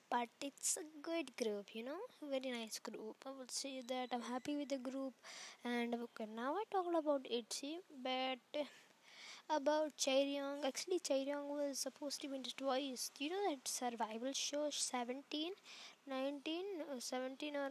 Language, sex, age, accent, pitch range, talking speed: English, female, 20-39, Indian, 240-290 Hz, 165 wpm